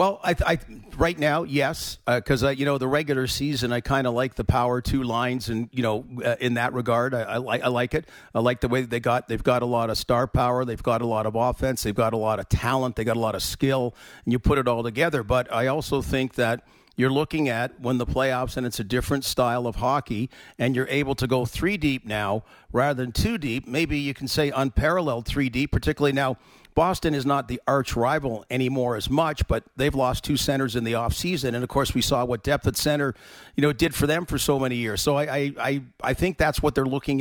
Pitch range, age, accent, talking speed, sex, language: 120-145 Hz, 50-69, American, 250 wpm, male, English